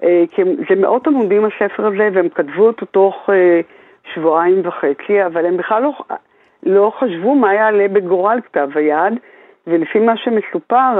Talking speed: 140 wpm